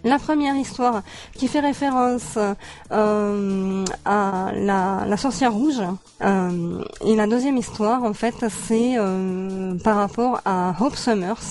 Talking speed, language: 135 wpm, French